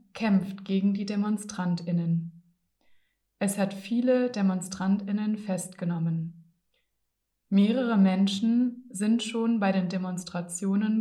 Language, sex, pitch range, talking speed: German, female, 180-225 Hz, 85 wpm